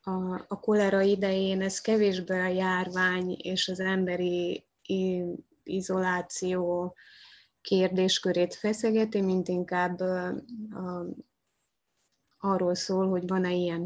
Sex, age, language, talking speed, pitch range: female, 20-39, Hungarian, 85 wpm, 175-200 Hz